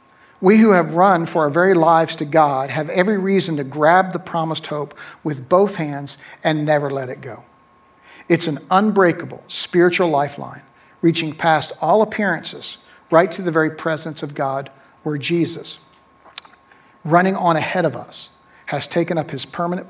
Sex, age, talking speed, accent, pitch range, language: male, 50-69, 165 wpm, American, 145-175 Hz, English